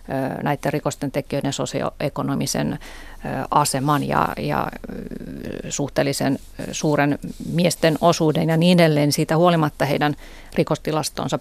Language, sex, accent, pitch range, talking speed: Finnish, female, native, 145-185 Hz, 90 wpm